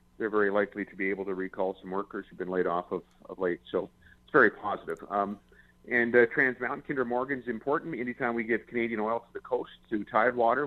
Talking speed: 225 wpm